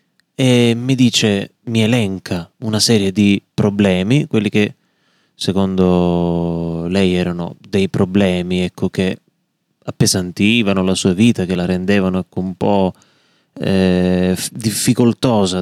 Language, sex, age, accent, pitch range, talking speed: Italian, male, 20-39, native, 95-130 Hz, 110 wpm